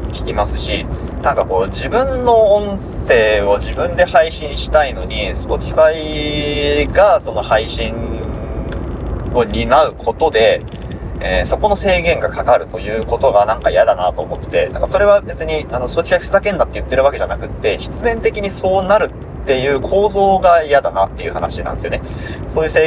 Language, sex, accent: Japanese, male, native